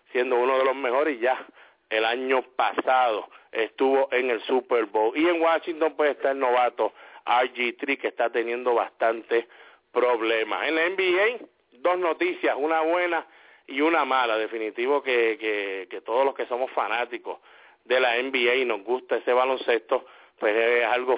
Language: English